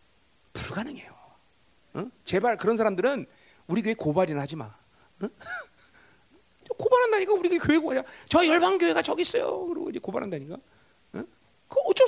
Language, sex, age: Korean, male, 40-59